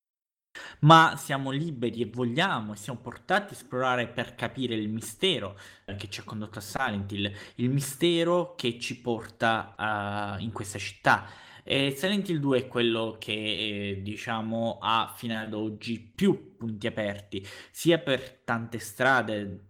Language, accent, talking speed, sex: Italian, native, 150 wpm, male